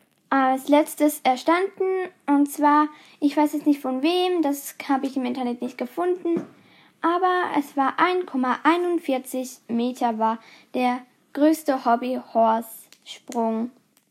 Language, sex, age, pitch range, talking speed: German, female, 10-29, 270-320 Hz, 115 wpm